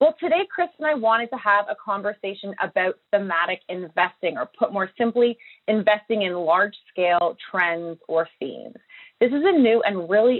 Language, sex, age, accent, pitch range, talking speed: English, female, 30-49, American, 170-225 Hz, 165 wpm